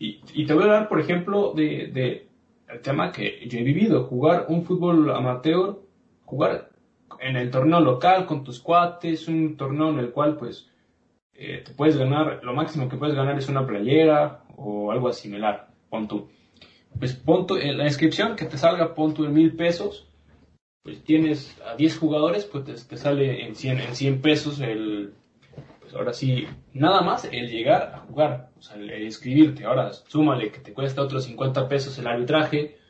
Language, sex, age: Spanish, male, 20-39